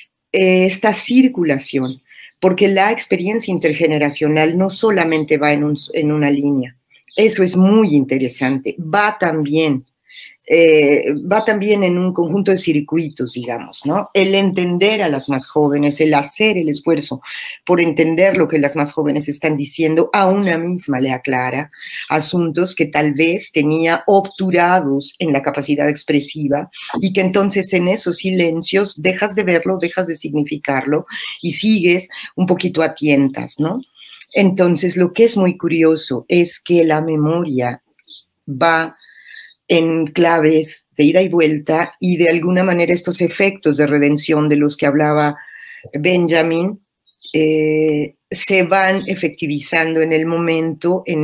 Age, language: 40-59, Spanish